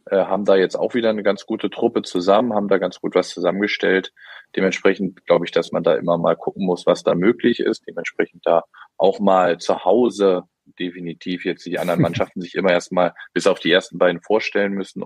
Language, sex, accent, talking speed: German, male, German, 205 wpm